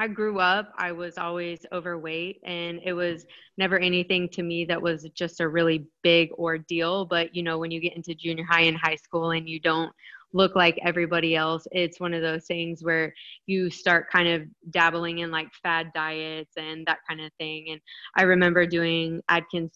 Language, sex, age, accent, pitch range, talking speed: English, female, 20-39, American, 160-180 Hz, 195 wpm